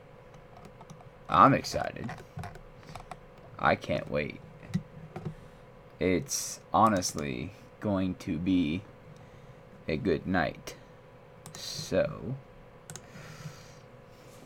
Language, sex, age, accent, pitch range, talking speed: English, male, 20-39, American, 95-110 Hz, 60 wpm